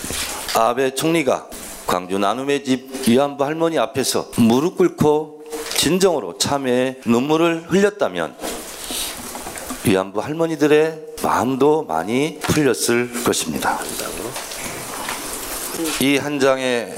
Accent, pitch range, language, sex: native, 120-155 Hz, Korean, male